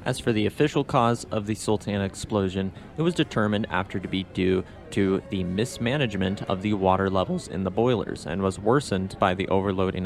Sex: male